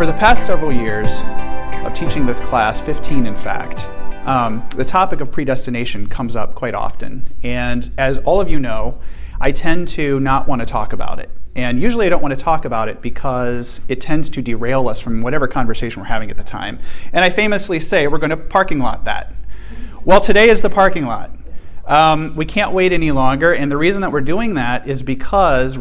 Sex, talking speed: male, 210 wpm